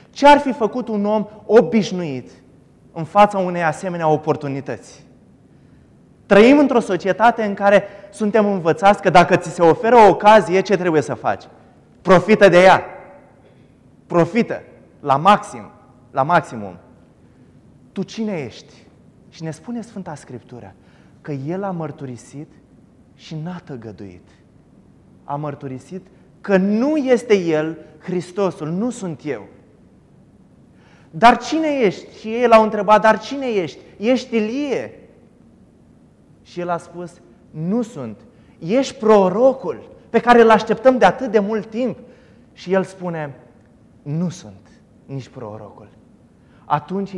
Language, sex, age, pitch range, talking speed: Romanian, male, 20-39, 145-215 Hz, 125 wpm